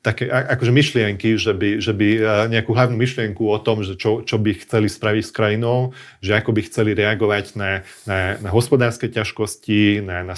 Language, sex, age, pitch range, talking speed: Slovak, male, 30-49, 105-120 Hz, 185 wpm